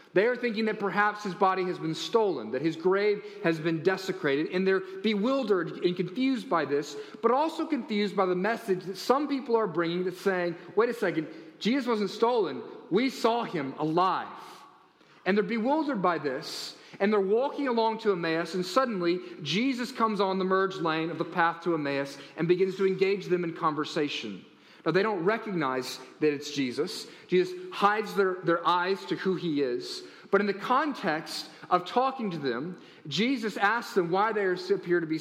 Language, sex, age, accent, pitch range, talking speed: English, male, 40-59, American, 165-210 Hz, 185 wpm